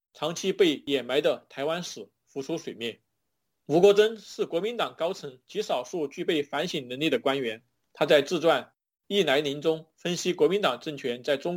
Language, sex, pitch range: Chinese, male, 140-185 Hz